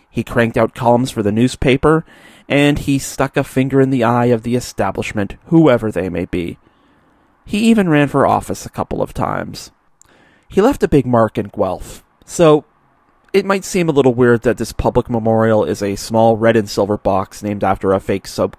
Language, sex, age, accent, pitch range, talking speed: English, male, 30-49, American, 110-140 Hz, 195 wpm